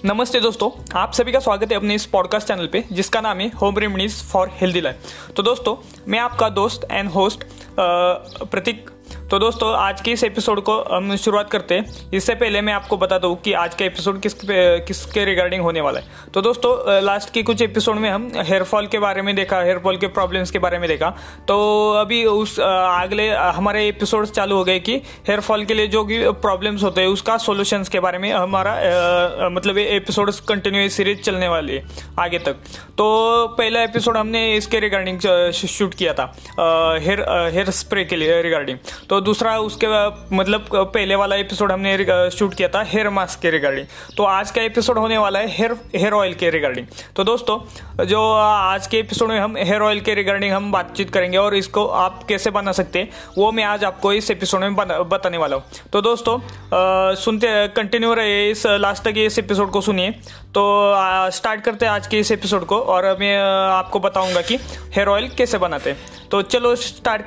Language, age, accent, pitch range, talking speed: Hindi, 20-39, native, 185-215 Hz, 195 wpm